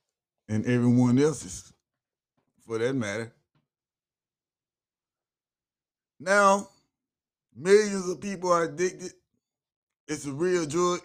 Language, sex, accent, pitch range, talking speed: English, male, American, 130-175 Hz, 85 wpm